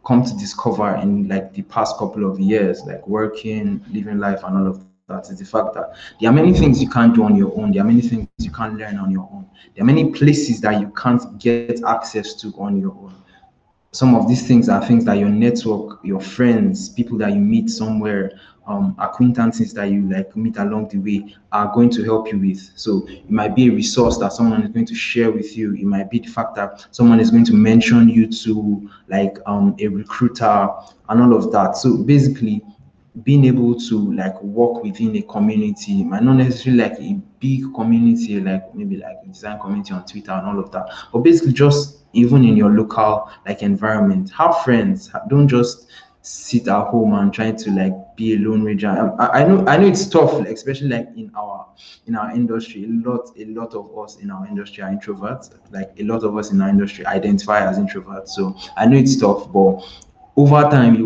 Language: English